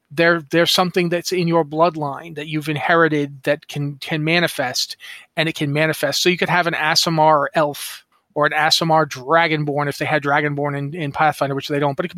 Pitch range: 150-185 Hz